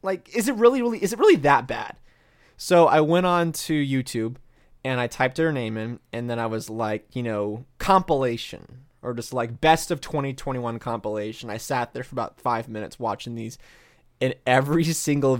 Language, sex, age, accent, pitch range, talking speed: English, male, 20-39, American, 120-170 Hz, 190 wpm